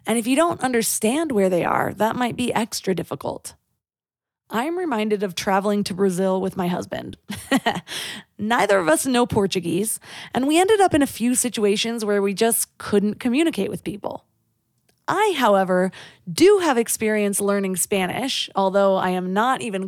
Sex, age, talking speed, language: female, 20-39, 165 wpm, English